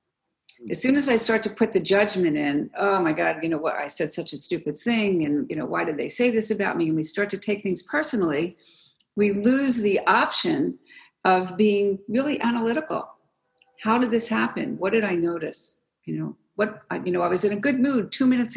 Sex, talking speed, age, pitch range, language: female, 220 wpm, 50-69, 170-230 Hz, English